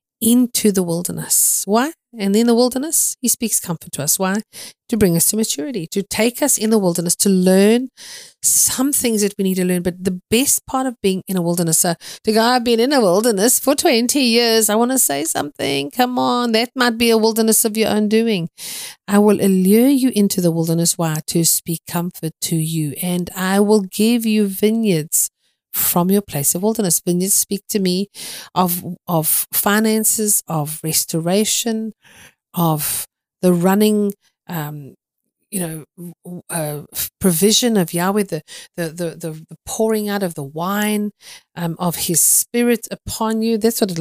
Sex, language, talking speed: female, English, 175 wpm